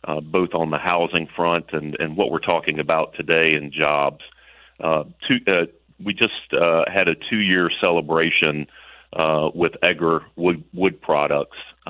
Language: English